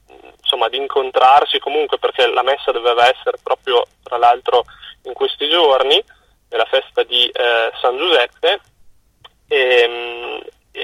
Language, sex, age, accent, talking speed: Italian, male, 20-39, native, 120 wpm